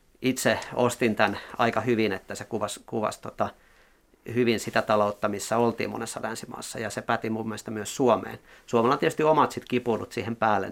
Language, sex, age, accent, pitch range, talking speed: Finnish, male, 40-59, native, 105-125 Hz, 180 wpm